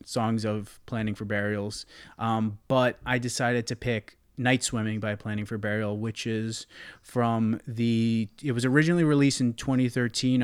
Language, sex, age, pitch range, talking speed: English, male, 30-49, 110-125 Hz, 155 wpm